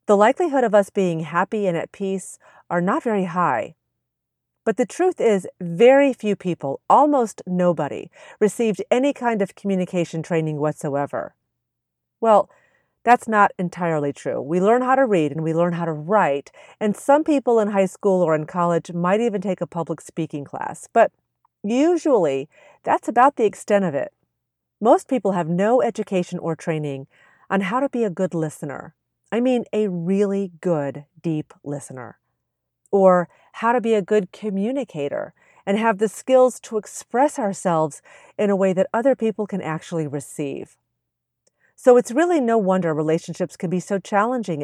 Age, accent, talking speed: 40-59, American, 165 wpm